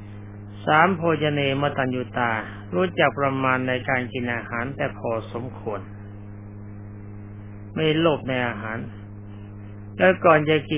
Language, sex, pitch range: Thai, male, 105-140 Hz